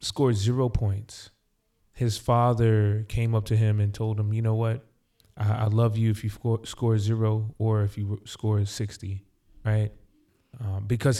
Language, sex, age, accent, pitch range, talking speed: English, male, 20-39, American, 105-115 Hz, 170 wpm